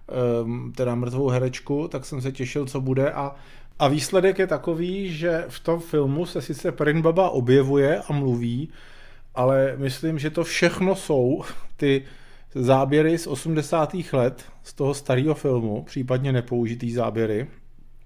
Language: Czech